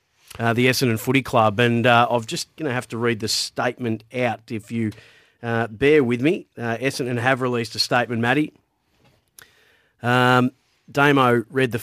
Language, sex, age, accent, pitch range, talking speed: English, male, 30-49, Australian, 115-135 Hz, 175 wpm